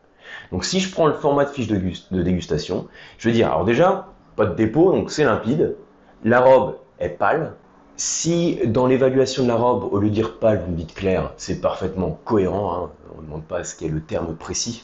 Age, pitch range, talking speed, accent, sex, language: 30-49, 95-135 Hz, 220 wpm, French, male, French